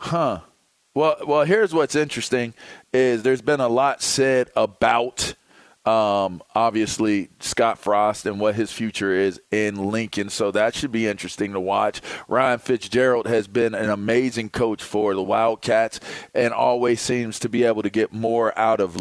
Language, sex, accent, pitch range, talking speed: English, male, American, 100-125 Hz, 165 wpm